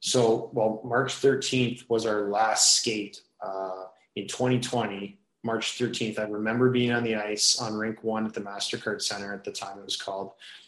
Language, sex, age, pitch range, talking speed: English, male, 20-39, 105-120 Hz, 180 wpm